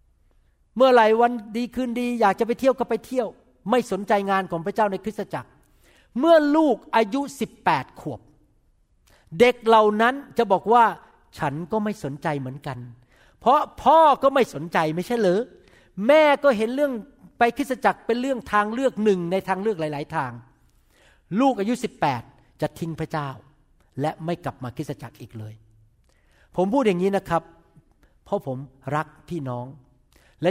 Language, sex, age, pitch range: Thai, male, 60-79, 135-210 Hz